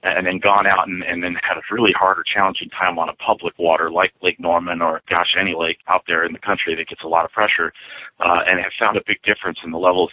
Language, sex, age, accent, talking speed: English, male, 40-59, American, 280 wpm